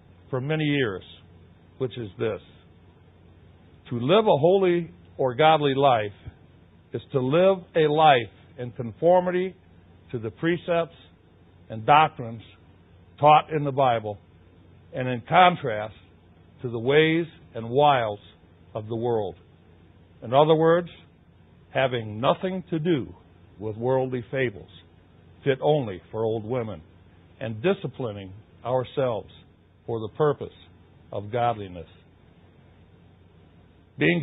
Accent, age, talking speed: American, 60-79, 110 wpm